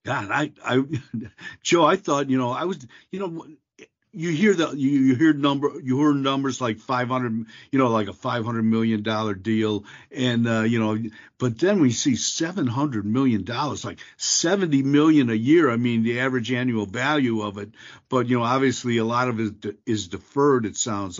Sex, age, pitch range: male, 60-79, 120-165 Hz